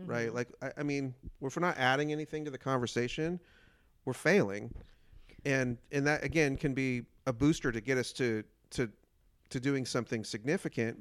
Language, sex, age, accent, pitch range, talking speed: English, male, 40-59, American, 115-140 Hz, 175 wpm